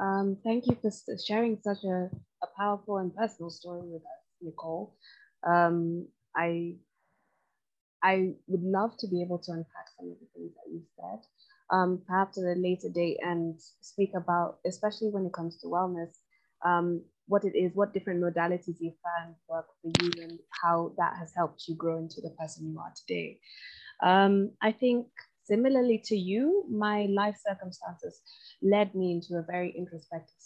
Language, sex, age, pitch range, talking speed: English, female, 20-39, 170-200 Hz, 170 wpm